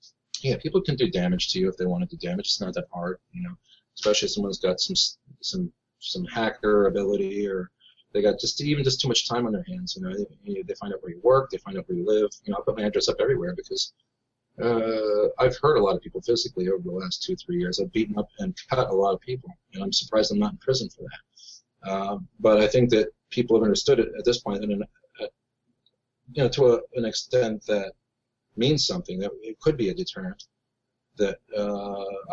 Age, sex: 40-59, male